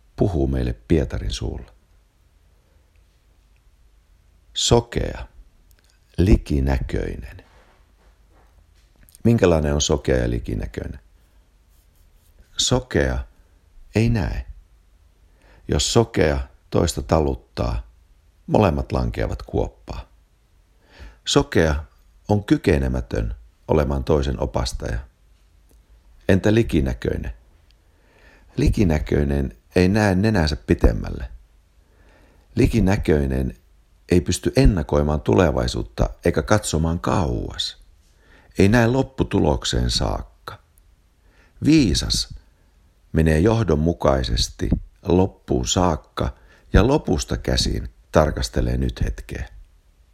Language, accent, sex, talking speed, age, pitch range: Finnish, native, male, 70 wpm, 60-79, 70-85 Hz